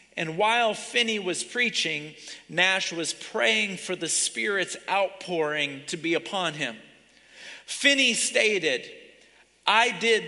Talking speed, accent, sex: 115 wpm, American, male